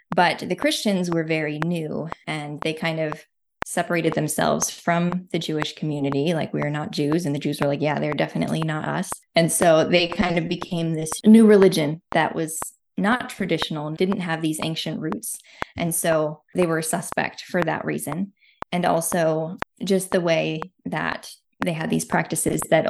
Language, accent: English, American